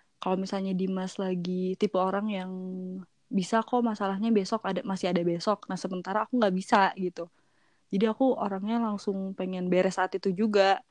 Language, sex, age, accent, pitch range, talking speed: Indonesian, female, 20-39, native, 185-220 Hz, 165 wpm